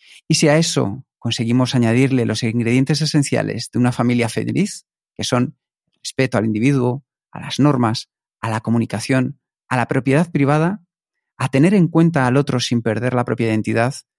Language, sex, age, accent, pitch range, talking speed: Spanish, male, 40-59, Spanish, 115-145 Hz, 165 wpm